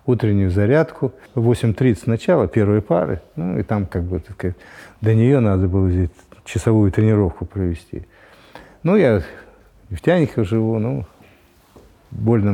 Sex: male